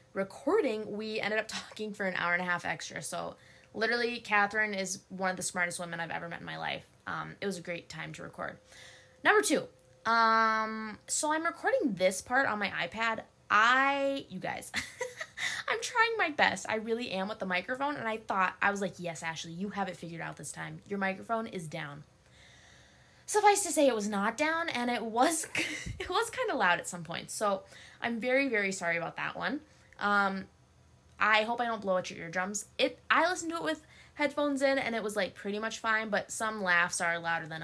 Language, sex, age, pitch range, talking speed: English, female, 10-29, 175-245 Hz, 215 wpm